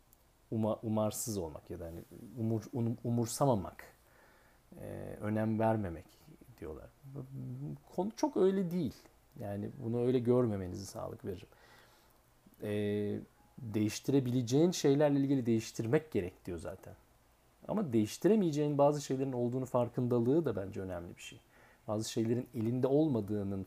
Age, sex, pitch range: 40-59, male, 105-140 Hz